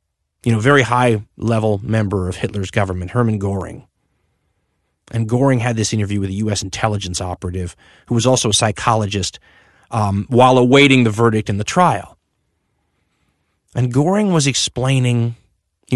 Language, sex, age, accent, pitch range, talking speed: English, male, 30-49, American, 100-130 Hz, 145 wpm